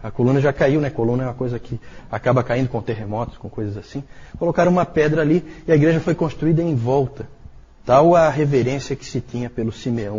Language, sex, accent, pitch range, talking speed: Portuguese, male, Brazilian, 115-145 Hz, 210 wpm